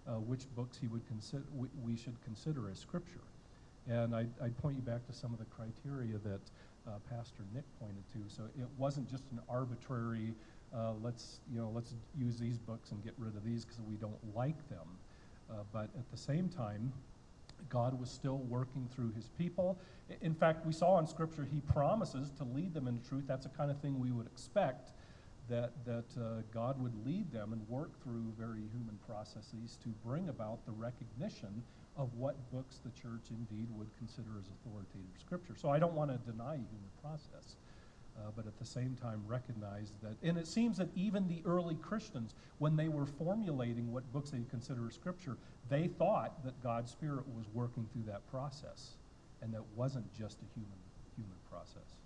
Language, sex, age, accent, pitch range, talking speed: English, male, 50-69, American, 115-140 Hz, 195 wpm